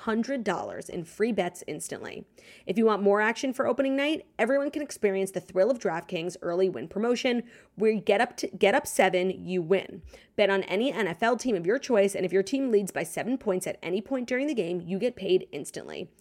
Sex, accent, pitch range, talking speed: female, American, 185-230 Hz, 220 wpm